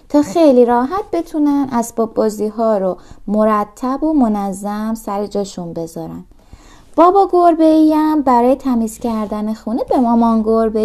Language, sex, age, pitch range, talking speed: Persian, female, 20-39, 225-315 Hz, 135 wpm